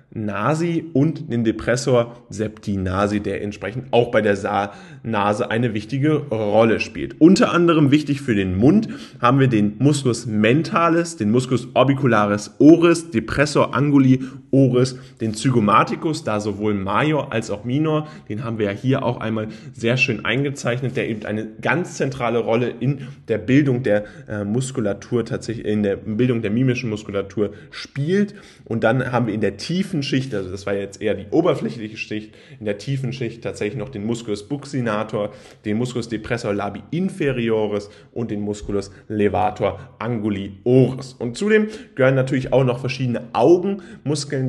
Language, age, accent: German, 10-29, German